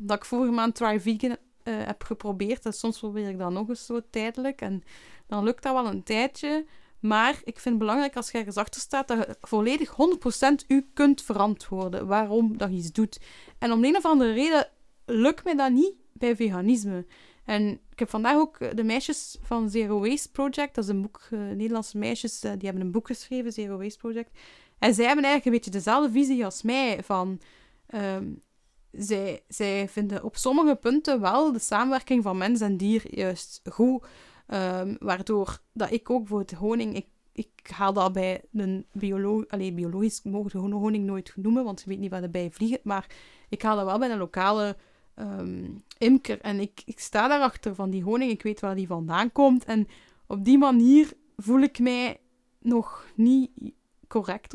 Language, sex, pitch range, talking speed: Dutch, female, 200-255 Hz, 195 wpm